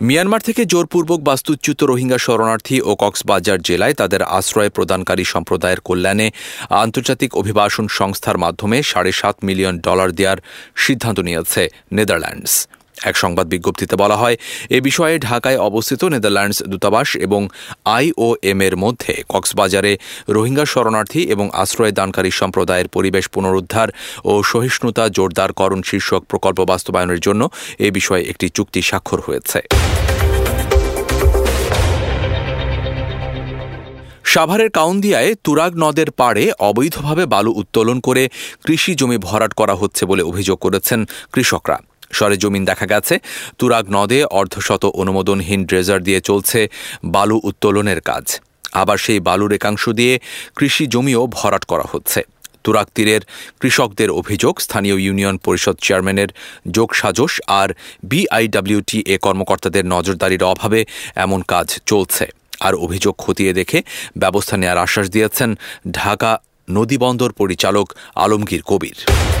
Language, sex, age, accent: English, male, 40-59, Indian